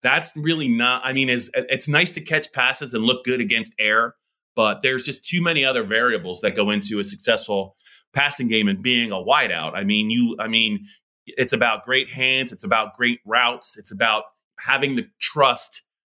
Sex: male